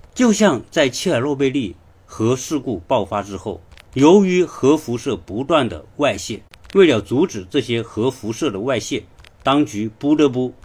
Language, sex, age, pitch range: Chinese, male, 50-69, 95-140 Hz